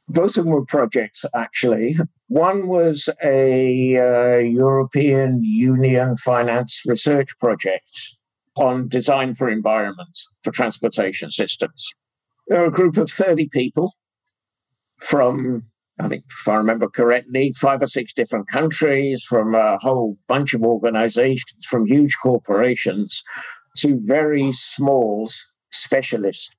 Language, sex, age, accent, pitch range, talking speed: English, male, 60-79, British, 120-155 Hz, 120 wpm